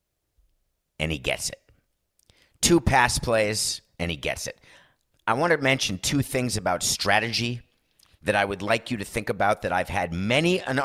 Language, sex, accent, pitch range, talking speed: English, male, American, 95-125 Hz, 175 wpm